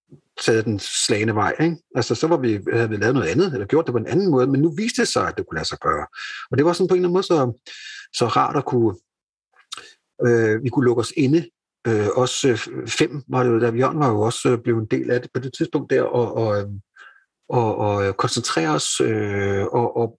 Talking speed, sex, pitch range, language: 240 wpm, male, 115-170 Hz, Danish